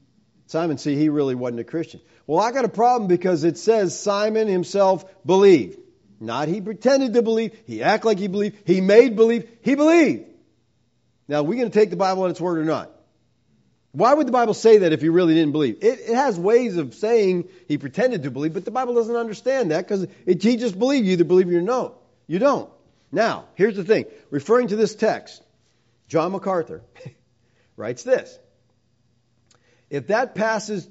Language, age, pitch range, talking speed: English, 50-69, 160-225 Hz, 195 wpm